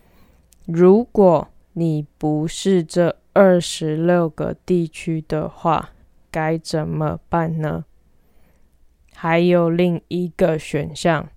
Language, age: Chinese, 20-39